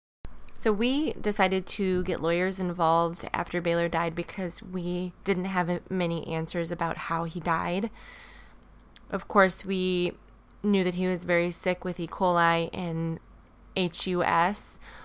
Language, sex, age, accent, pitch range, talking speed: English, female, 20-39, American, 170-185 Hz, 135 wpm